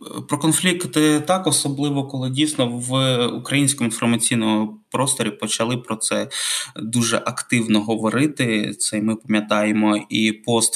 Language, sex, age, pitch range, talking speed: Ukrainian, male, 20-39, 115-150 Hz, 115 wpm